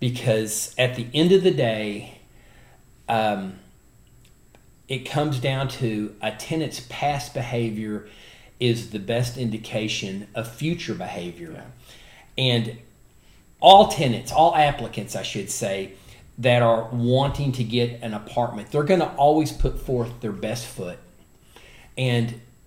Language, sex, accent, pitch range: English, male, American, 110-135 Hz